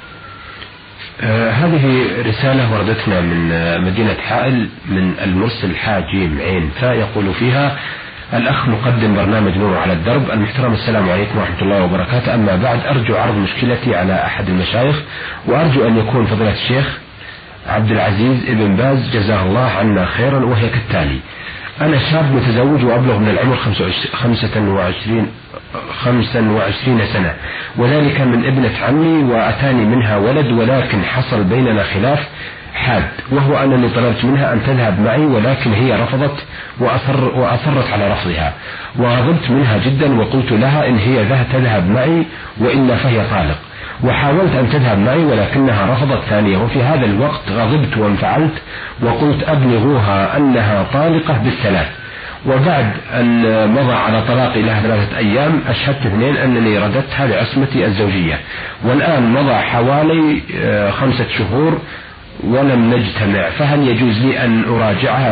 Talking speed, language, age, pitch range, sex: 130 wpm, Arabic, 40-59, 105-135 Hz, male